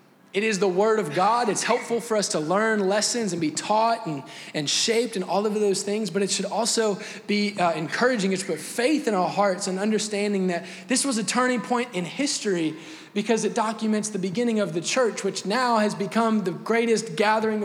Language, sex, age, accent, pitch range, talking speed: English, male, 20-39, American, 170-215 Hz, 210 wpm